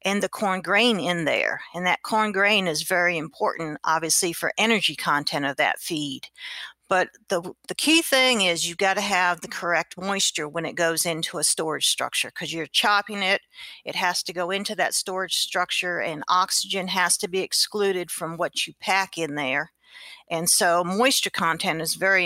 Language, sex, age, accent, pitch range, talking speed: English, female, 50-69, American, 170-205 Hz, 190 wpm